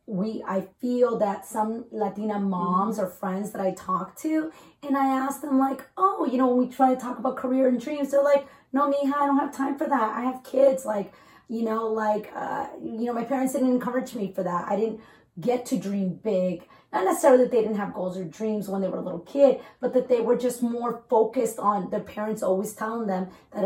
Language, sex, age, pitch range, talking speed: English, female, 30-49, 200-265 Hz, 235 wpm